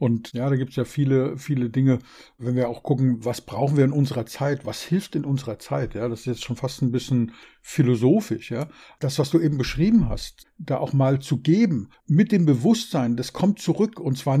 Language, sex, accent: German, male, German